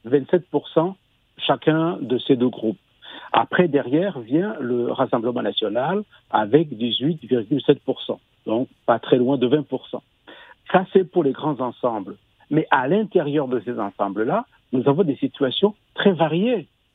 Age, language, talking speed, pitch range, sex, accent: 60-79, French, 130 wpm, 125-180 Hz, male, French